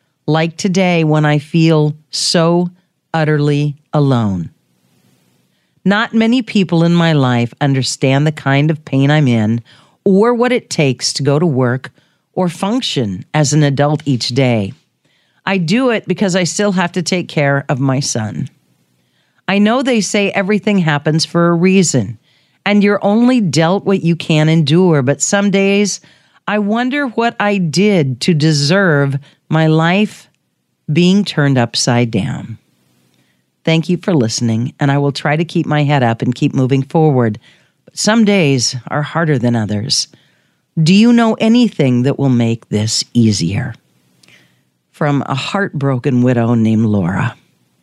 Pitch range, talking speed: 125-180 Hz, 150 wpm